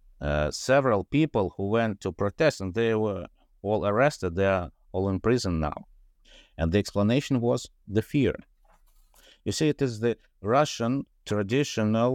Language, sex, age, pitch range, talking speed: English, male, 50-69, 85-115 Hz, 155 wpm